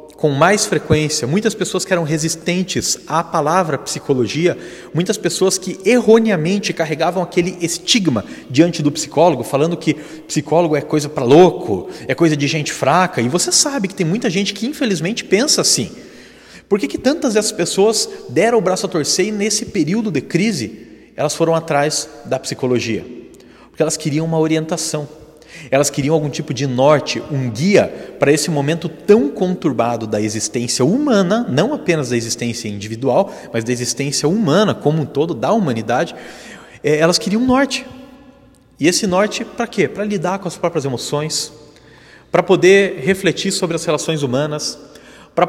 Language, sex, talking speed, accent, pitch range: Portuguese, male, 160 wpm, Brazilian, 150-195 Hz